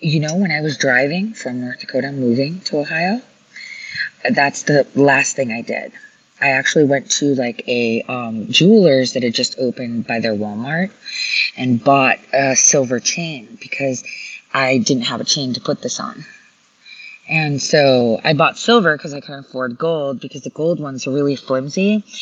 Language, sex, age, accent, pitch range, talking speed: English, female, 20-39, American, 135-215 Hz, 175 wpm